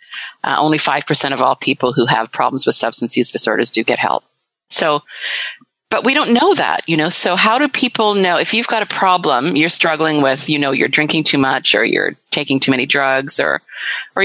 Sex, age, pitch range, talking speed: female, 40-59, 130-160 Hz, 215 wpm